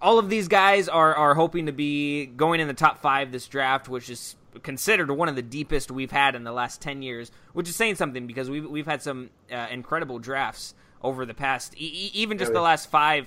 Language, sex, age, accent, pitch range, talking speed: English, male, 20-39, American, 125-155 Hz, 230 wpm